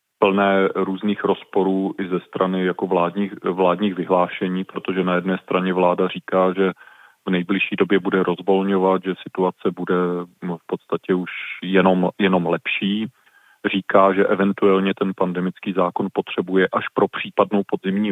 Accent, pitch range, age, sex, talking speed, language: native, 90-100 Hz, 30-49, male, 140 wpm, Czech